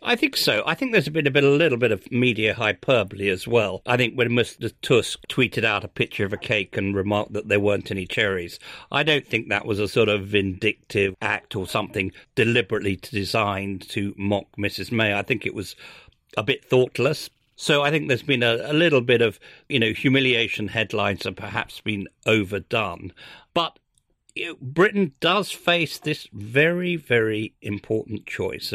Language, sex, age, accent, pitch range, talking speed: English, male, 50-69, British, 105-140 Hz, 185 wpm